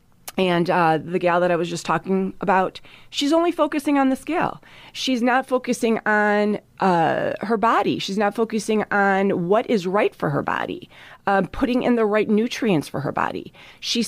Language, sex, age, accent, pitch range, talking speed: English, female, 30-49, American, 165-215 Hz, 190 wpm